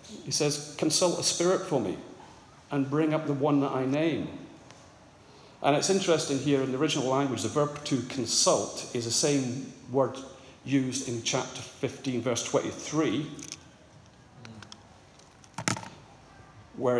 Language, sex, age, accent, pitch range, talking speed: English, male, 40-59, British, 125-150 Hz, 135 wpm